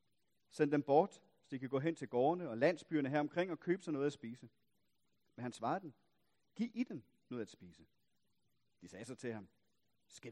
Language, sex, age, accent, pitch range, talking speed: Danish, male, 40-59, native, 120-170 Hz, 210 wpm